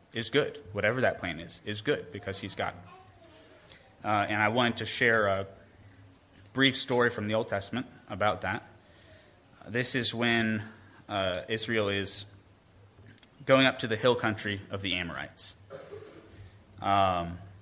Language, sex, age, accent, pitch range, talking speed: English, male, 20-39, American, 95-115 Hz, 145 wpm